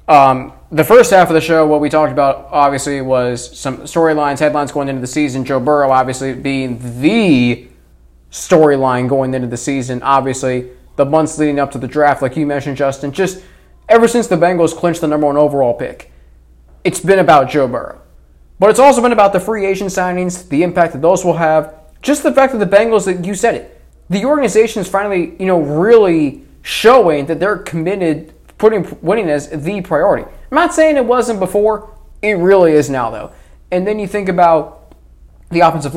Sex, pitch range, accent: male, 145-195 Hz, American